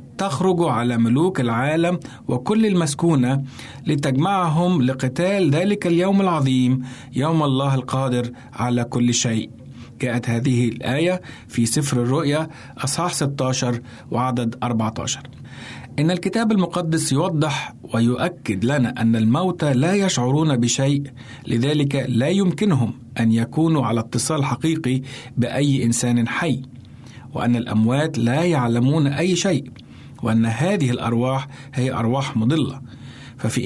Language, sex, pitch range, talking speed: Arabic, male, 120-155 Hz, 110 wpm